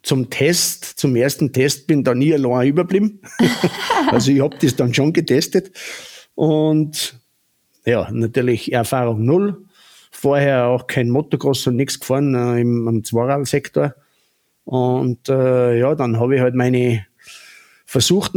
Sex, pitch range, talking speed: male, 125-150 Hz, 135 wpm